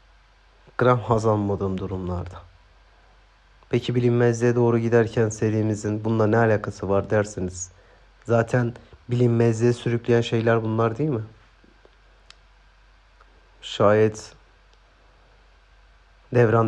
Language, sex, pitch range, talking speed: Turkish, male, 95-110 Hz, 80 wpm